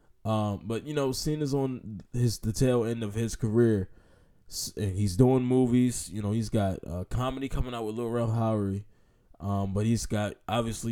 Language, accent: English, American